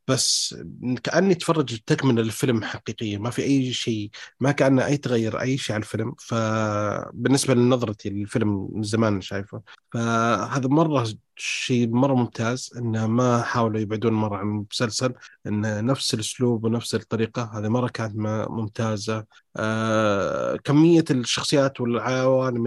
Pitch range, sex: 110-140 Hz, male